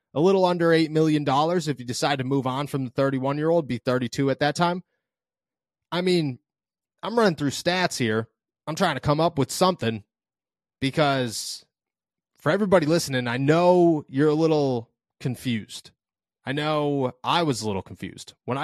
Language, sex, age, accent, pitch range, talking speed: English, male, 30-49, American, 130-170 Hz, 165 wpm